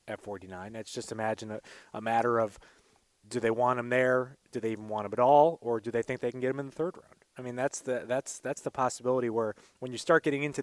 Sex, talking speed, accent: male, 265 wpm, American